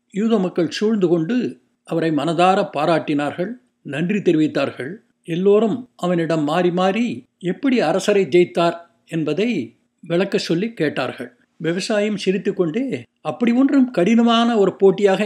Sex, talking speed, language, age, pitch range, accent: male, 110 wpm, Tamil, 60-79, 165-210 Hz, native